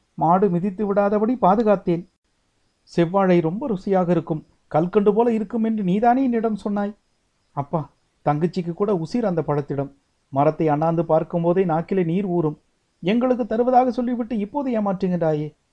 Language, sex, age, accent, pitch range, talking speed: Tamil, male, 60-79, native, 135-200 Hz, 125 wpm